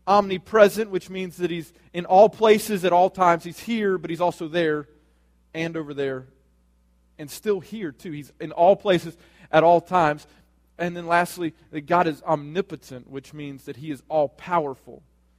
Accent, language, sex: American, English, male